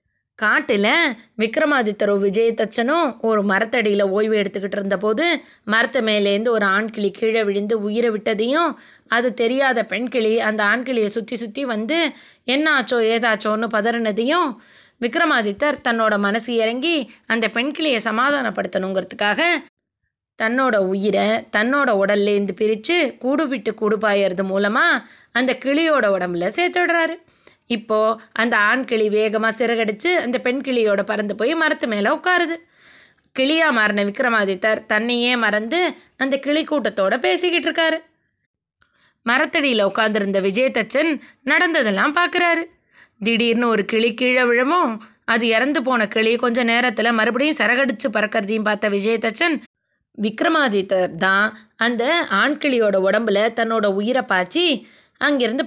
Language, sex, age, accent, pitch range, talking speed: Tamil, female, 20-39, native, 215-285 Hz, 110 wpm